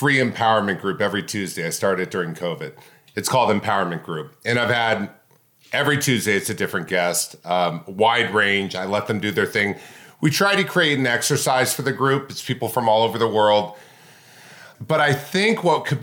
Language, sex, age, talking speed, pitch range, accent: English, male, 40-59, 195 wpm, 110-140 Hz, American